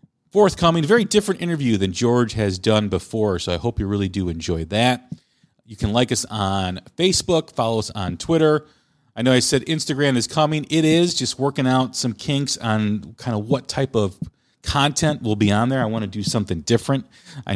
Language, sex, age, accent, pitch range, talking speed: English, male, 40-59, American, 100-130 Hz, 205 wpm